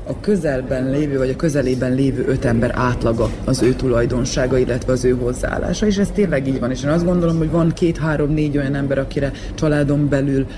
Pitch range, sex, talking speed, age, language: 120-145 Hz, female, 195 wpm, 30-49, Hungarian